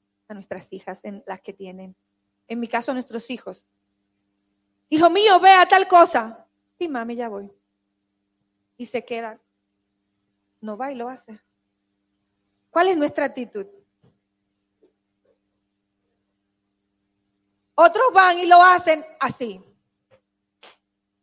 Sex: female